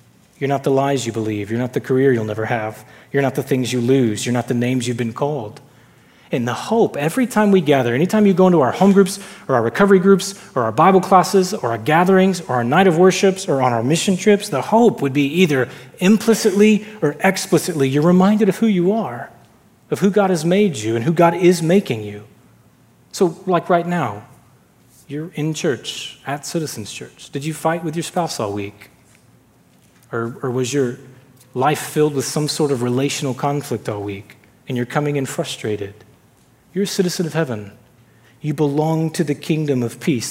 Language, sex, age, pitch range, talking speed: English, male, 30-49, 125-175 Hz, 200 wpm